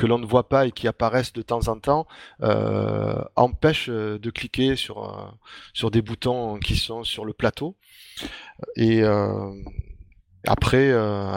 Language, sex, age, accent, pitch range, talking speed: French, male, 20-39, French, 105-125 Hz, 160 wpm